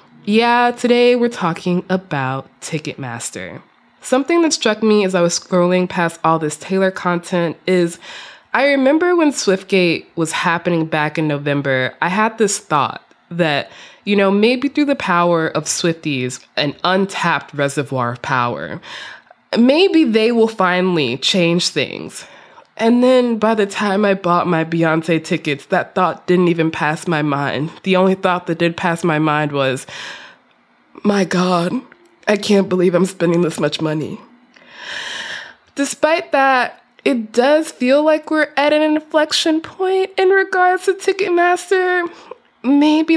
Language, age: English, 20-39